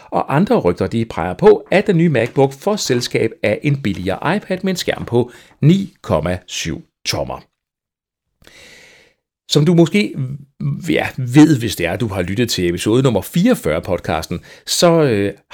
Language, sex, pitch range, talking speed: Danish, male, 95-150 Hz, 160 wpm